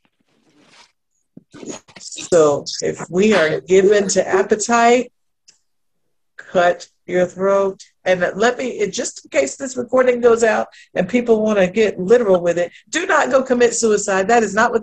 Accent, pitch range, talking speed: American, 190-245 Hz, 155 wpm